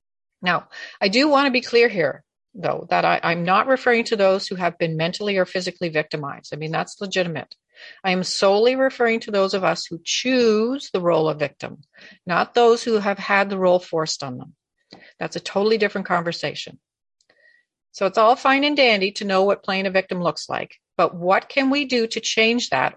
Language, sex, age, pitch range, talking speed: English, female, 50-69, 185-255 Hz, 200 wpm